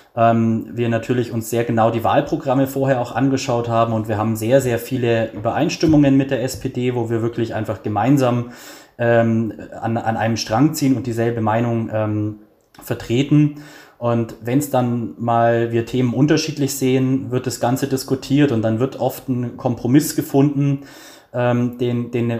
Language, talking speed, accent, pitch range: German, 155 wpm, German, 115-135 Hz